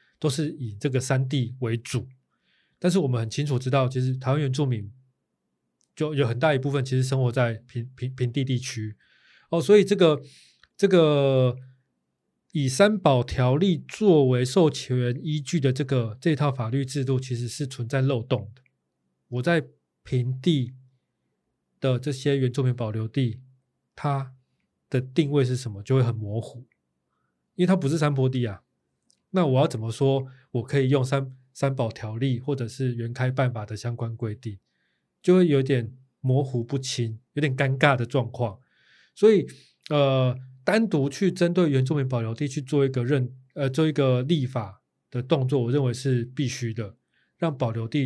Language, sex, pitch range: Chinese, male, 125-145 Hz